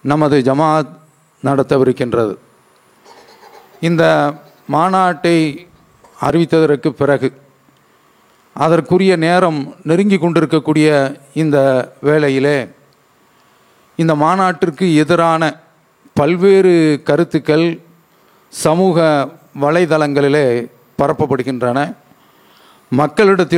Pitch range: 135-175 Hz